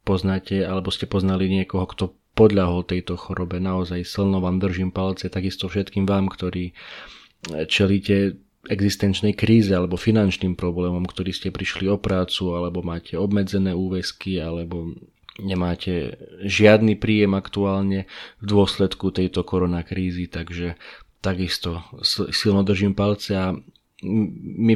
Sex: male